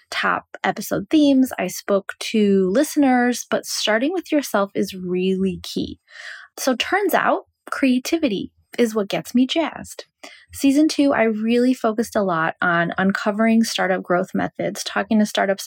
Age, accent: 20-39, American